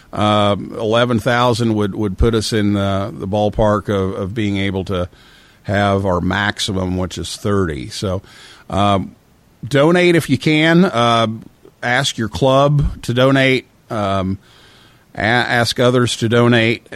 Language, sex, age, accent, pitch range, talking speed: English, male, 50-69, American, 100-130 Hz, 140 wpm